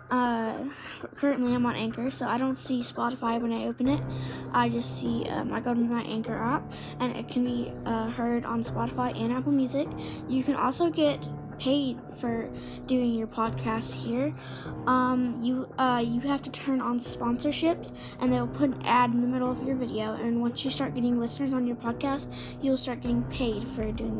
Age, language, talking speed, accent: 10-29, English, 200 wpm, American